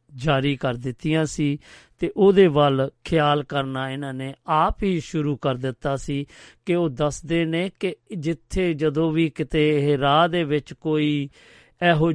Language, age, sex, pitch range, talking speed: Punjabi, 50-69, male, 140-160 Hz, 160 wpm